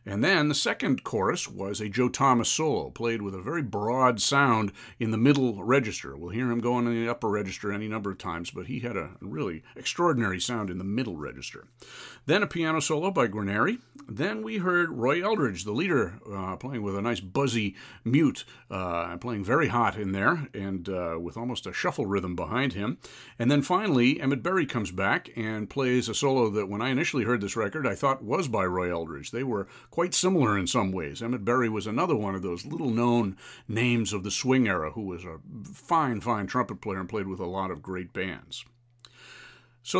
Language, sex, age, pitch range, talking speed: English, male, 50-69, 100-135 Hz, 205 wpm